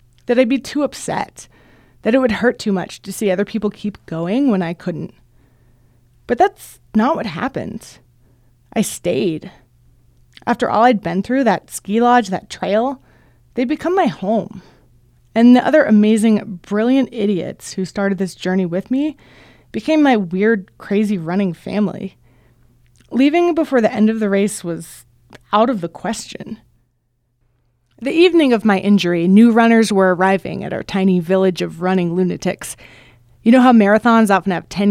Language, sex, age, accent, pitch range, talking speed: English, female, 20-39, American, 165-230 Hz, 160 wpm